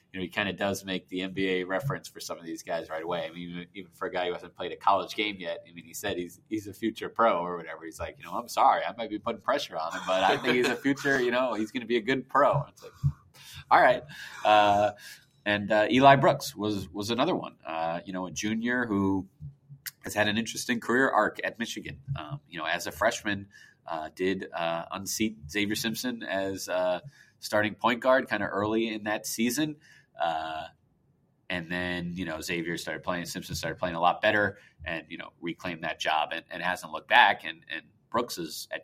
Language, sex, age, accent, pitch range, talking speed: English, male, 30-49, American, 90-120 Hz, 230 wpm